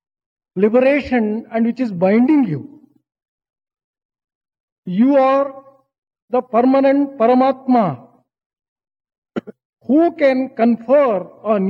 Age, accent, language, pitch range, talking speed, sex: 50-69, Indian, English, 205-255 Hz, 75 wpm, male